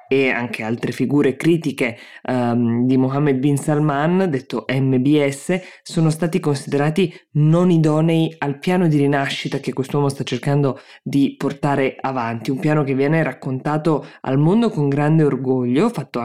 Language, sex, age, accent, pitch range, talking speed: Italian, female, 20-39, native, 130-150 Hz, 140 wpm